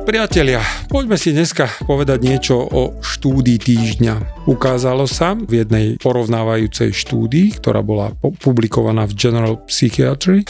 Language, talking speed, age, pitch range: Slovak, 120 wpm, 40-59, 115-140 Hz